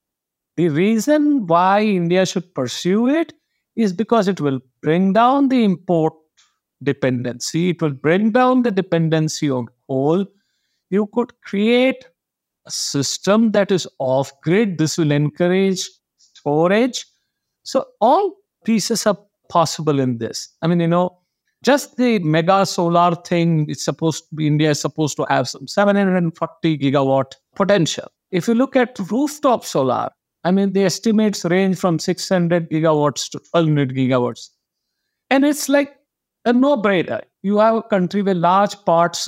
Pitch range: 155-220 Hz